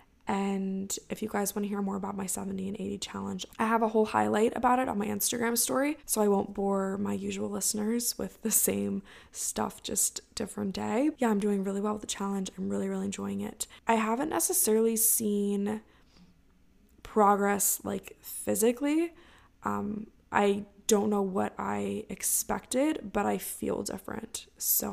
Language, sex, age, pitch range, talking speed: English, female, 20-39, 200-225 Hz, 170 wpm